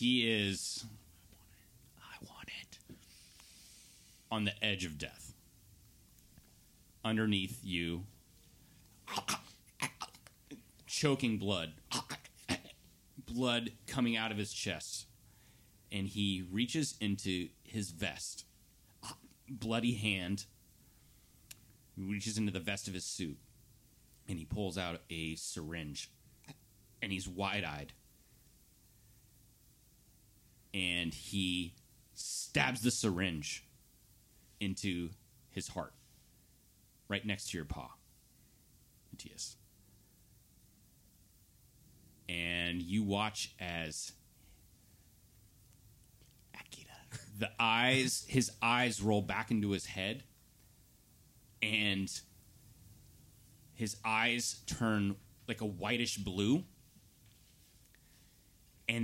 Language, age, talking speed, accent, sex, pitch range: English, 30-49, 80 wpm, American, male, 95-115 Hz